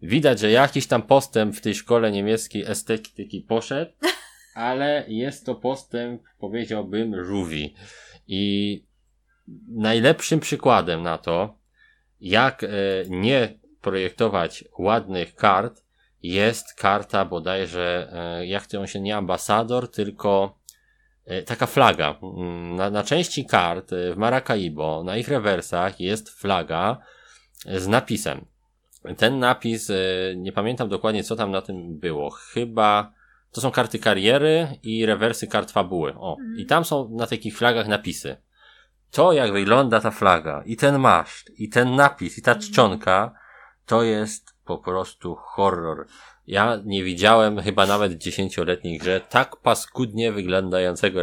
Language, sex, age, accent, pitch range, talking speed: Polish, male, 20-39, native, 95-115 Hz, 125 wpm